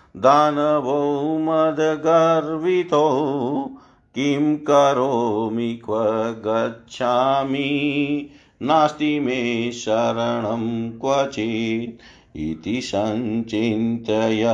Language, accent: Hindi, native